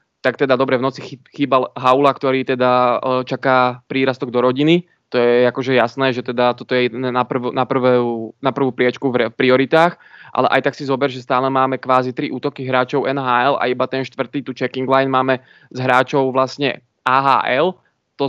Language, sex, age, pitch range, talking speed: Czech, male, 20-39, 125-135 Hz, 185 wpm